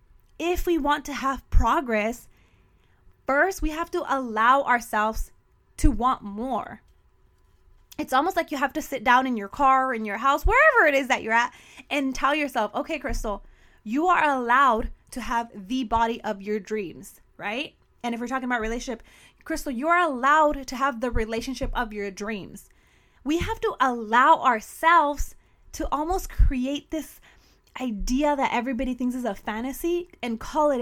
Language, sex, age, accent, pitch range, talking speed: English, female, 20-39, American, 230-285 Hz, 170 wpm